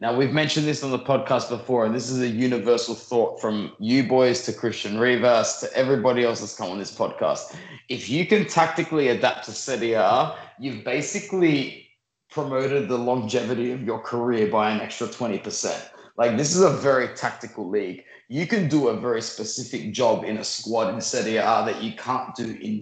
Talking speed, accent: 185 wpm, Australian